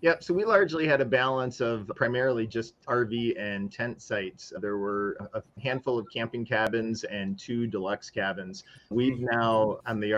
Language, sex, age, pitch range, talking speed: English, male, 30-49, 105-115 Hz, 170 wpm